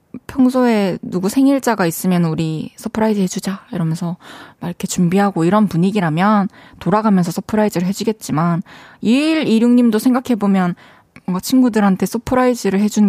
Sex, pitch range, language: female, 175-245 Hz, Korean